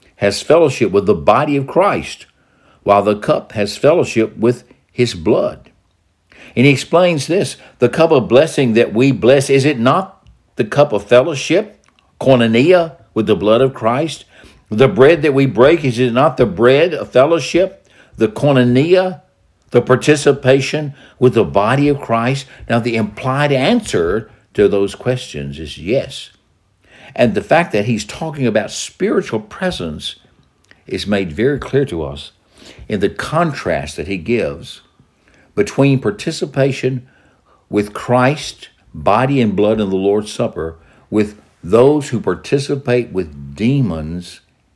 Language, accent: English, American